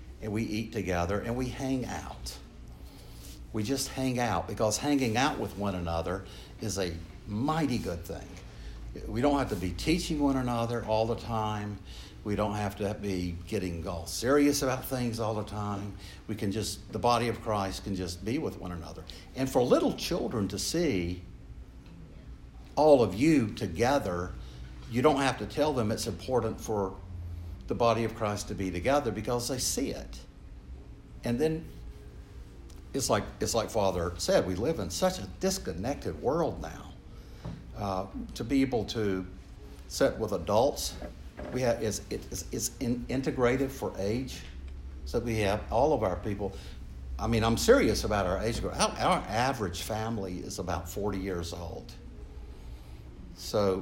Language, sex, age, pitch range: English, male, 60-79, 85-115 Hz